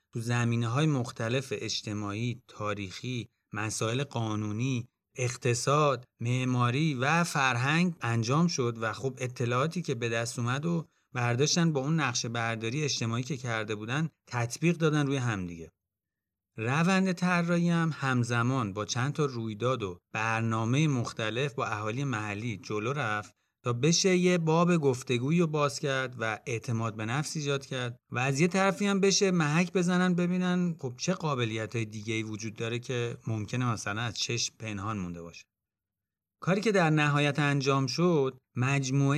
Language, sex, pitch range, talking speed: Persian, male, 110-150 Hz, 150 wpm